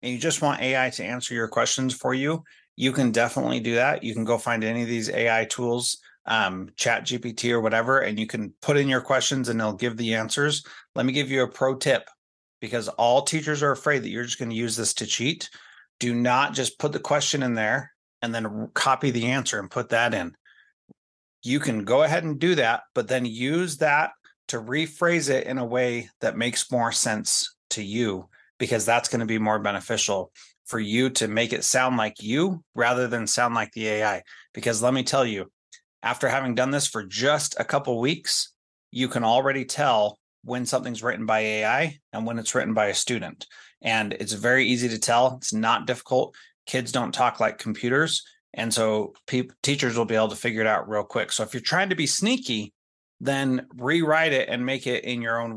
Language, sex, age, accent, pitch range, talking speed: English, male, 30-49, American, 115-135 Hz, 210 wpm